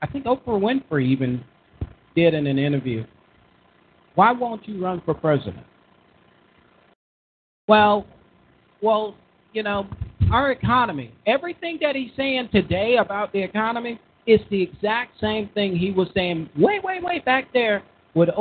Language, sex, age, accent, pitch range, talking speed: English, male, 40-59, American, 160-220 Hz, 140 wpm